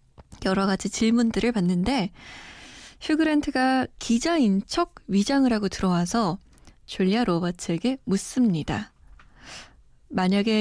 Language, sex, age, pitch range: Korean, female, 20-39, 180-235 Hz